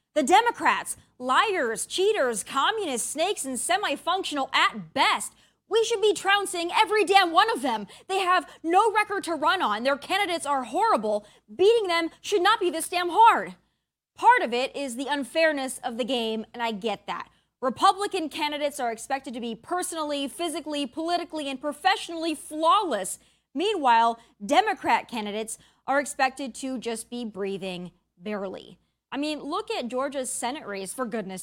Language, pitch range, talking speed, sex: English, 260-375 Hz, 155 wpm, female